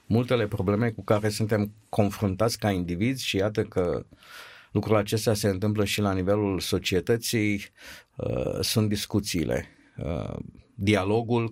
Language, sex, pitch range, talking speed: Romanian, male, 105-125 Hz, 115 wpm